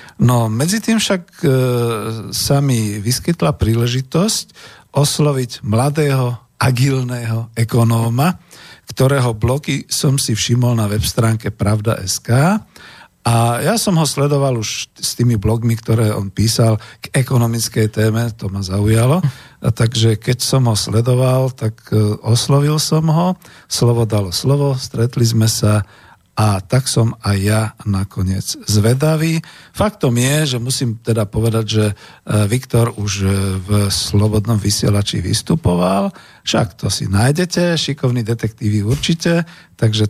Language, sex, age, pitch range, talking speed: Slovak, male, 50-69, 110-135 Hz, 125 wpm